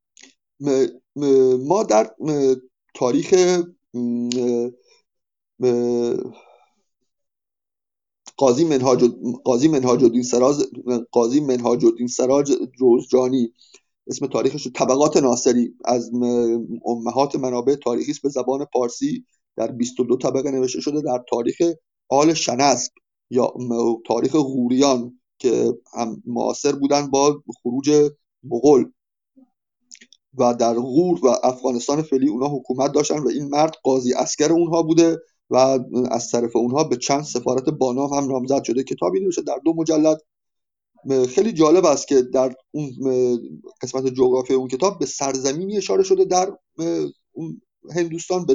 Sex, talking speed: male, 110 wpm